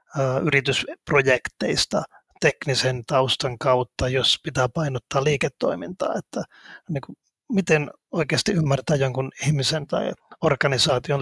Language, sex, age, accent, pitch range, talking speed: Finnish, male, 30-49, native, 130-150 Hz, 95 wpm